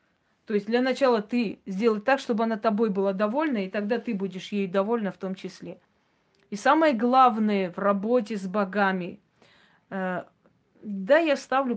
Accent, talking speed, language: native, 165 wpm, Russian